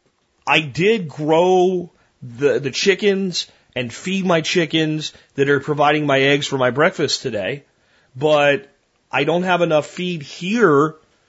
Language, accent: English, American